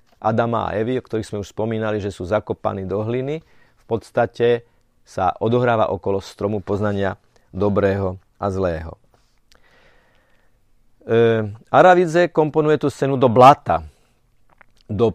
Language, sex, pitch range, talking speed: Slovak, male, 105-125 Hz, 125 wpm